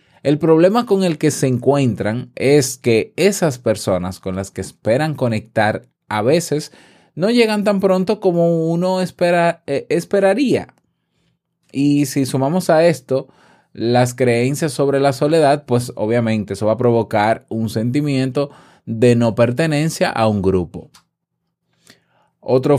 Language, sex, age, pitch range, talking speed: Spanish, male, 20-39, 105-145 Hz, 135 wpm